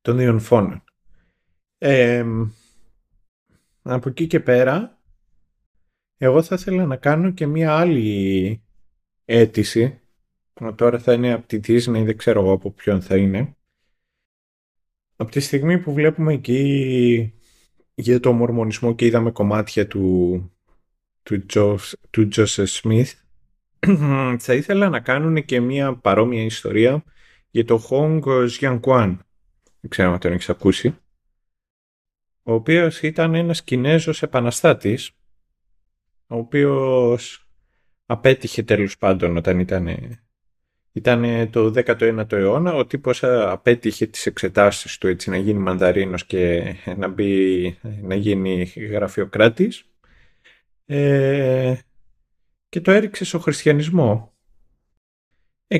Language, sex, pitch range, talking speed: Greek, male, 95-135 Hz, 110 wpm